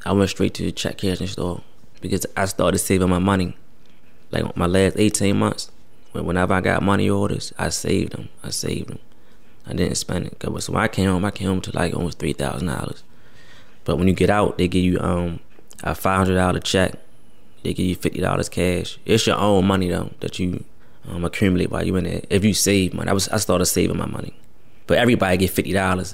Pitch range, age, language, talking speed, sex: 90-100 Hz, 20-39, English, 210 wpm, male